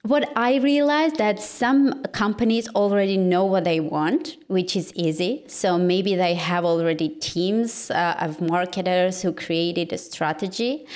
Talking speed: 150 wpm